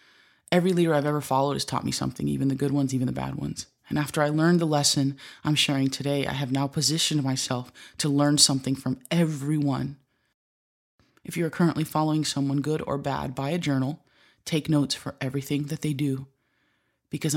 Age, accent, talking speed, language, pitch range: 20-39, American, 190 wpm, English, 135-155 Hz